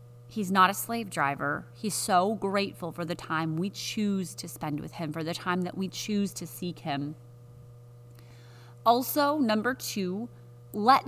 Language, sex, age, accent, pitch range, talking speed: English, female, 30-49, American, 145-195 Hz, 160 wpm